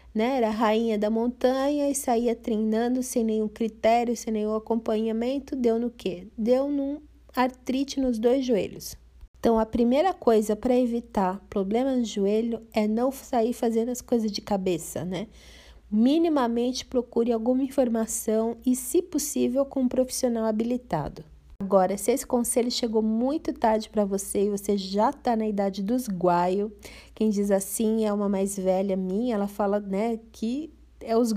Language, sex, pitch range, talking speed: Portuguese, female, 215-255 Hz, 160 wpm